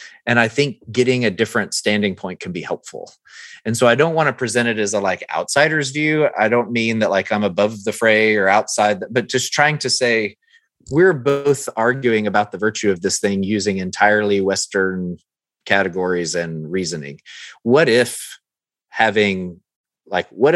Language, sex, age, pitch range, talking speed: English, male, 30-49, 100-125 Hz, 175 wpm